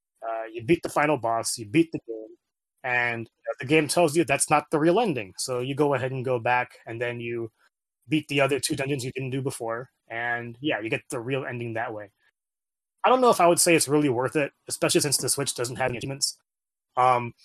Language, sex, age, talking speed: English, male, 20-39, 240 wpm